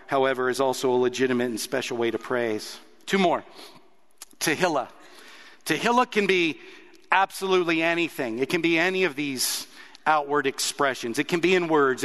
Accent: American